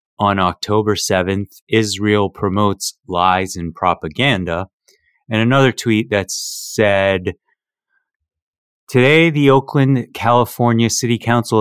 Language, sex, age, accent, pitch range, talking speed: English, male, 30-49, American, 90-115 Hz, 100 wpm